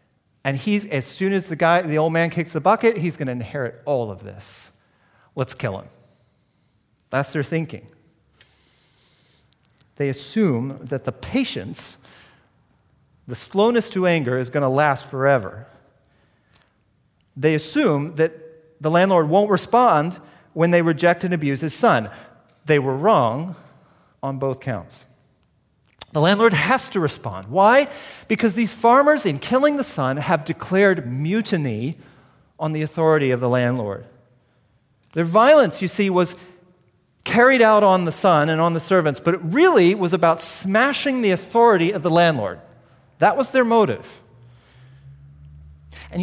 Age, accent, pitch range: 40-59, American, 130-185 Hz